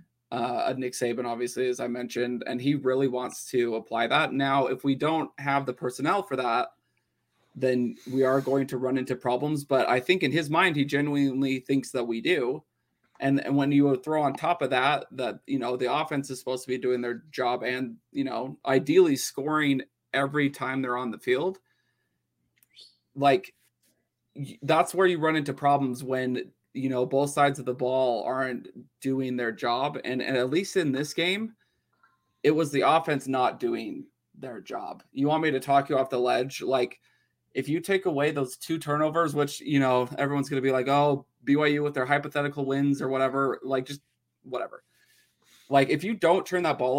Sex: male